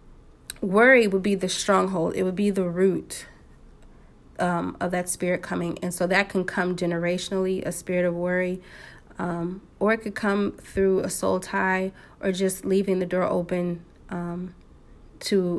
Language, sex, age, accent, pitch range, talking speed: English, female, 30-49, American, 175-200 Hz, 160 wpm